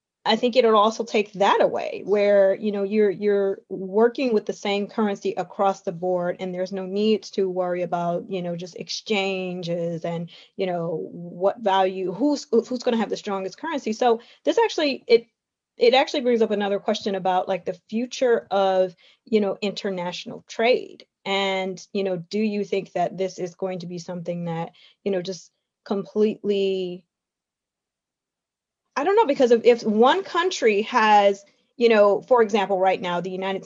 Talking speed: 175 wpm